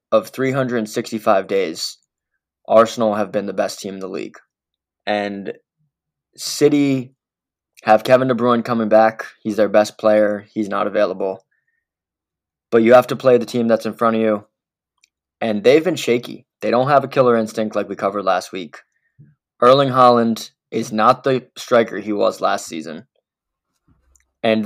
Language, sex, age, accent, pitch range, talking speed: English, male, 20-39, American, 105-125 Hz, 160 wpm